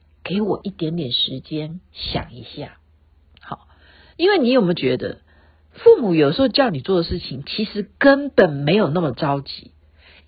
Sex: female